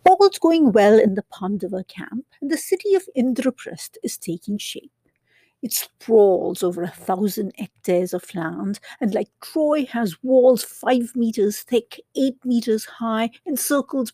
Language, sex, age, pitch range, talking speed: English, female, 50-69, 200-270 Hz, 150 wpm